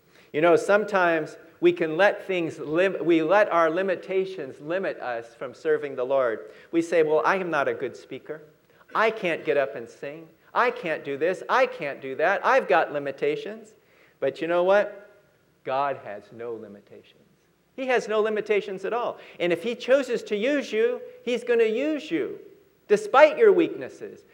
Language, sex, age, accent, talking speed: English, male, 50-69, American, 180 wpm